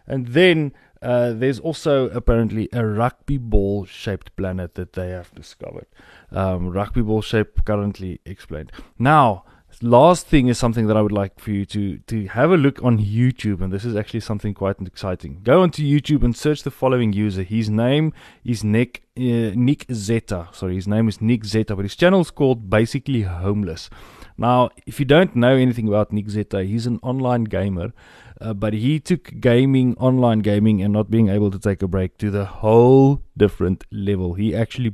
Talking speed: 185 wpm